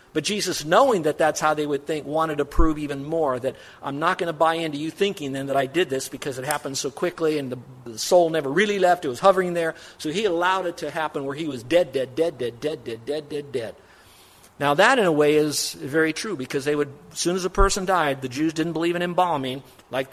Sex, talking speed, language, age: male, 255 wpm, English, 50-69